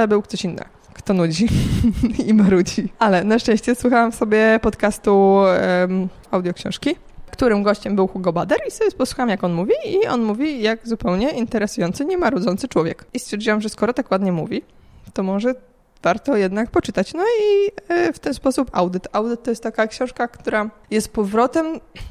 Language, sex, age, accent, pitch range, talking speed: Polish, female, 20-39, native, 180-235 Hz, 165 wpm